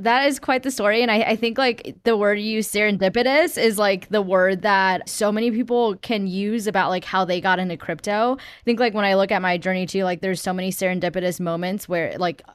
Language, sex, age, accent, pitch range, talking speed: English, female, 10-29, American, 175-205 Hz, 235 wpm